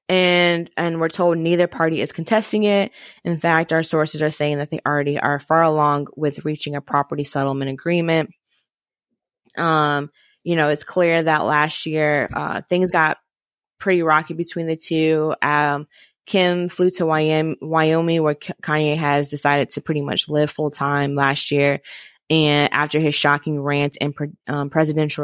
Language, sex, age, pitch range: English, female, 20-39, 145-170 Hz